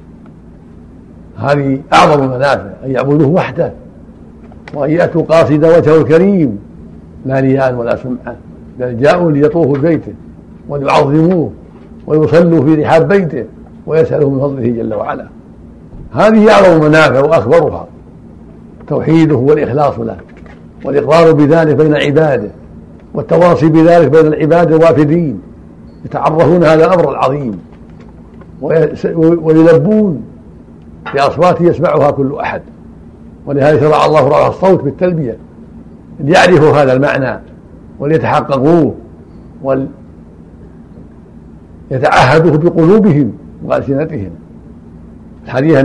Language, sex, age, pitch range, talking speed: Arabic, male, 60-79, 115-160 Hz, 90 wpm